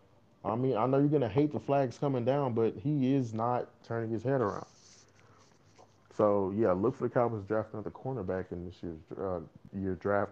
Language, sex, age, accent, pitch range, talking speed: English, male, 20-39, American, 95-120 Hz, 205 wpm